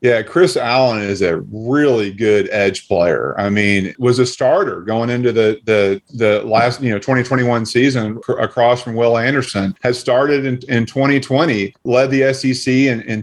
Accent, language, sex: American, English, male